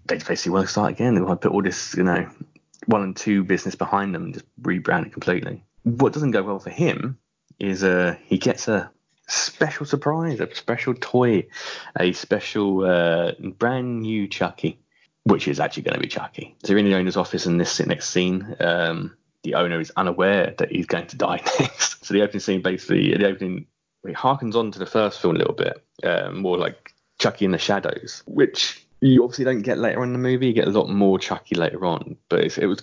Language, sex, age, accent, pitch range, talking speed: English, male, 20-39, British, 90-115 Hz, 220 wpm